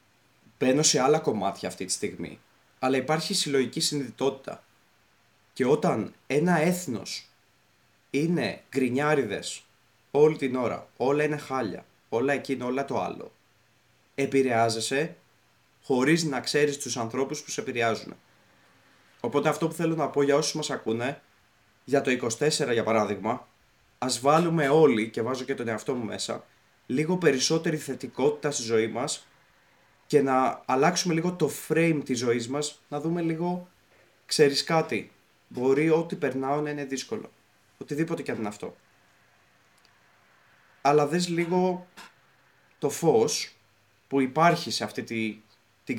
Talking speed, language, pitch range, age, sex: 135 wpm, Greek, 120-160 Hz, 20-39, male